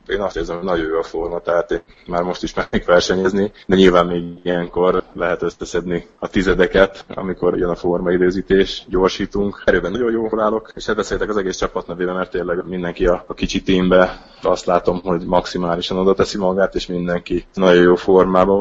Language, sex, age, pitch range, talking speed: Hungarian, male, 20-39, 85-95 Hz, 175 wpm